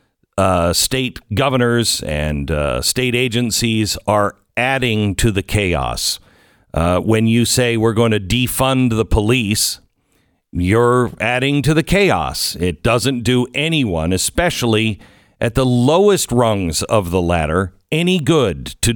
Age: 50-69